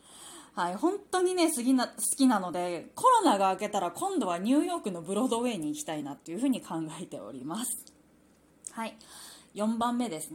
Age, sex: 20-39, female